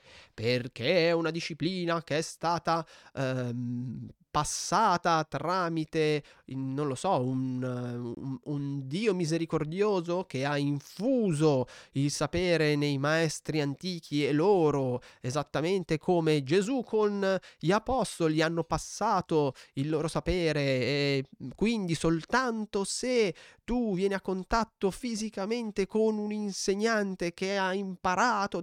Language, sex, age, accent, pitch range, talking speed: Italian, male, 20-39, native, 130-190 Hz, 110 wpm